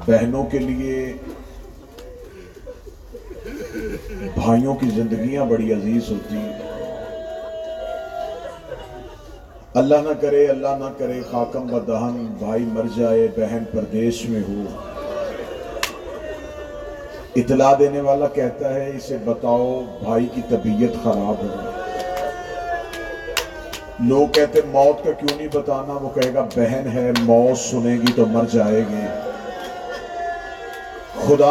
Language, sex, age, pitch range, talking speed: Urdu, male, 40-59, 120-155 Hz, 110 wpm